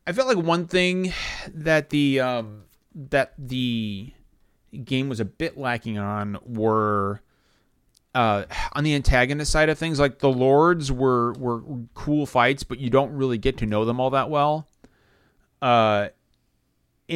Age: 30-49